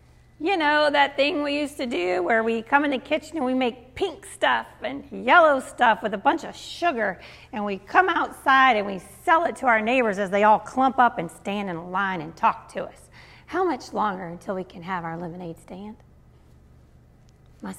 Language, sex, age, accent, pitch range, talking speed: English, female, 40-59, American, 175-250 Hz, 215 wpm